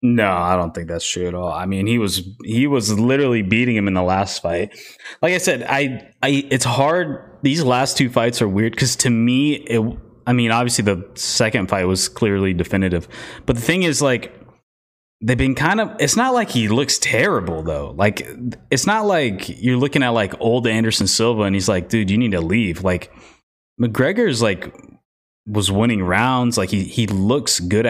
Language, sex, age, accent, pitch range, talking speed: English, male, 20-39, American, 95-125 Hz, 200 wpm